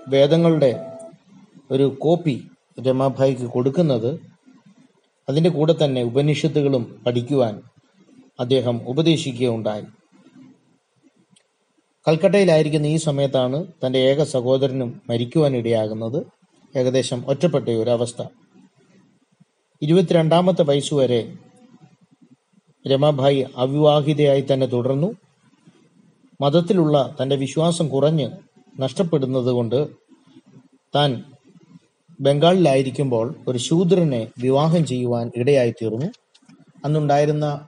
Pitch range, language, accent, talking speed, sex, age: 125-160 Hz, Malayalam, native, 65 wpm, male, 30-49